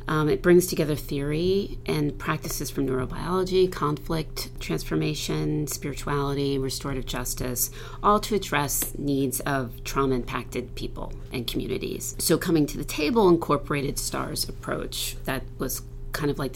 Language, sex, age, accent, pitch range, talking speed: English, female, 40-59, American, 125-150 Hz, 130 wpm